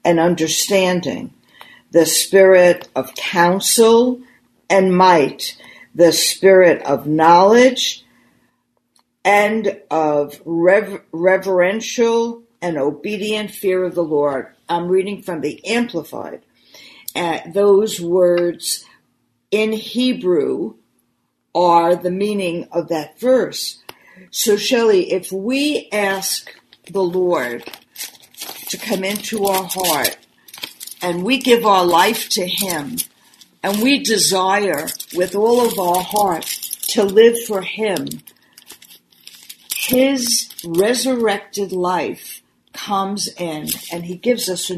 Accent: American